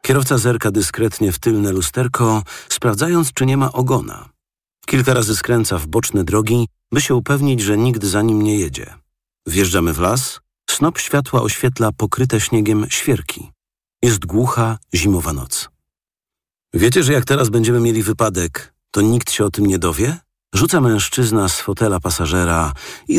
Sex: male